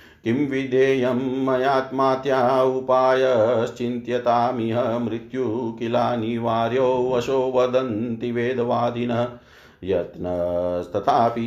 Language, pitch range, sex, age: Hindi, 115-130 Hz, male, 50-69